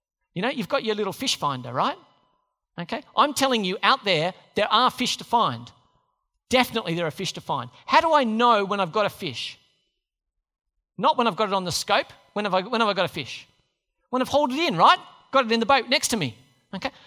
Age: 40-59